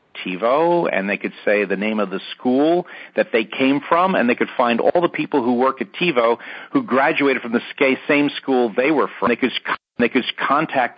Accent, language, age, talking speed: American, English, 50-69, 220 wpm